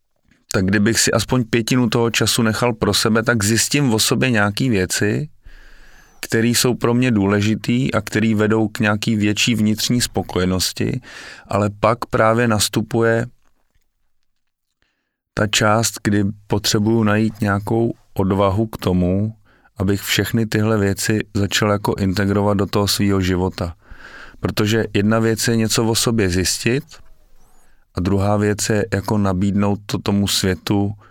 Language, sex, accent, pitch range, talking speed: Czech, male, native, 100-115 Hz, 135 wpm